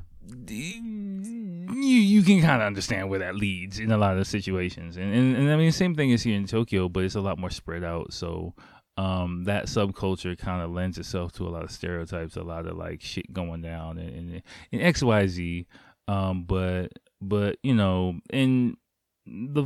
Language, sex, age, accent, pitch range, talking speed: English, male, 20-39, American, 90-115 Hz, 200 wpm